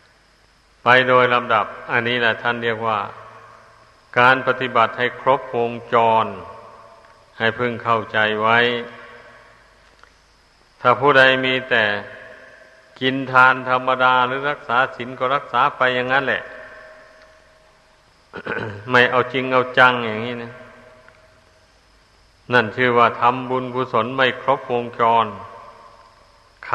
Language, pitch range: Thai, 115-130 Hz